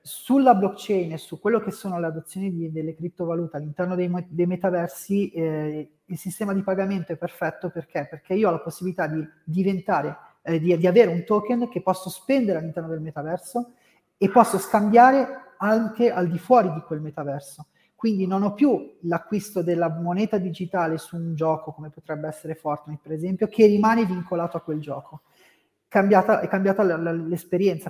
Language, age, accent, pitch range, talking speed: Italian, 30-49, native, 165-205 Hz, 170 wpm